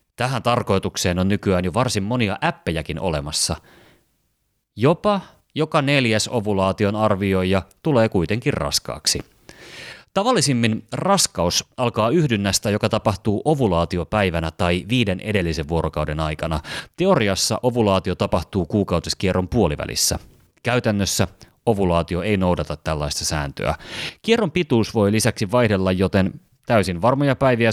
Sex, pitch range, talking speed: male, 90-120 Hz, 105 wpm